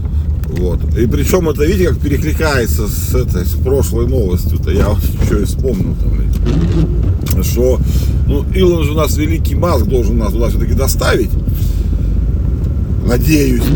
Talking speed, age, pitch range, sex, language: 130 wpm, 40-59, 80-95 Hz, male, Russian